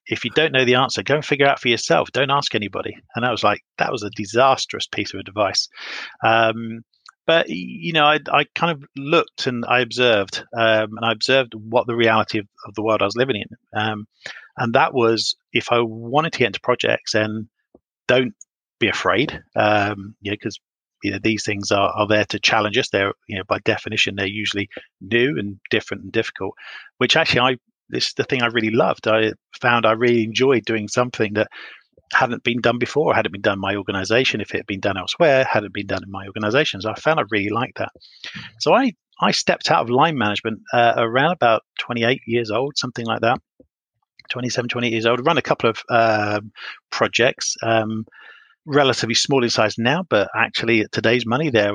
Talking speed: 210 wpm